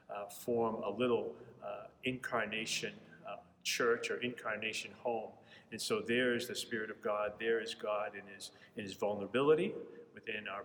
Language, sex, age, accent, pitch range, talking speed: English, male, 40-59, American, 110-125 Hz, 165 wpm